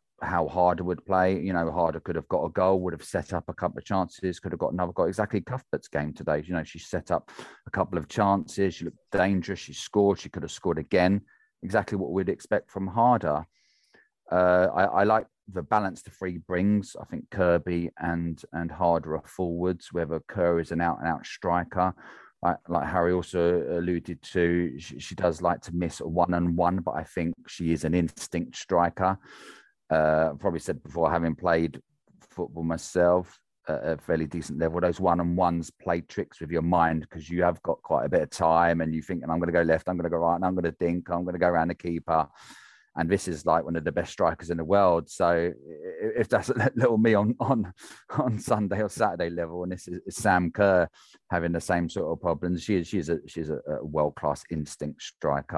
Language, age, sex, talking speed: English, 30-49, male, 215 wpm